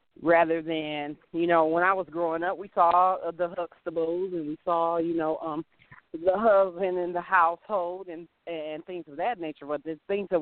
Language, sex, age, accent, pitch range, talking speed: English, female, 40-59, American, 145-185 Hz, 195 wpm